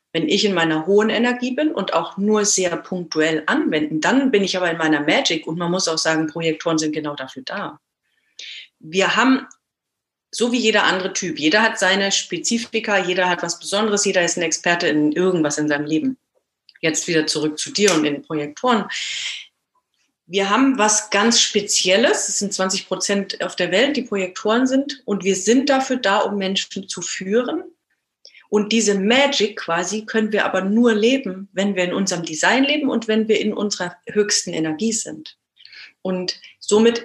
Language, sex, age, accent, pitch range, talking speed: German, female, 40-59, German, 165-220 Hz, 180 wpm